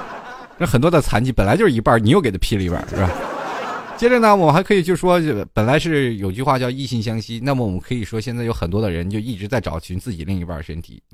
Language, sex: Chinese, male